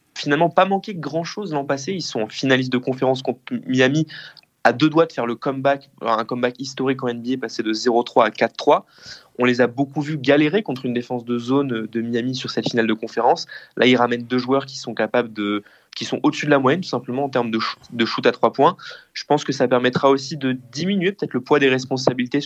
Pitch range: 120-145 Hz